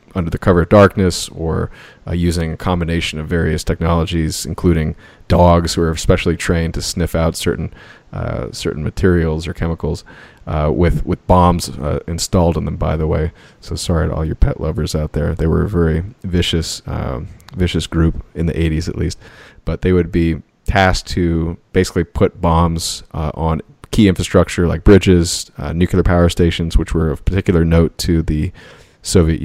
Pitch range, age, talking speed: 80-90 Hz, 30-49, 180 wpm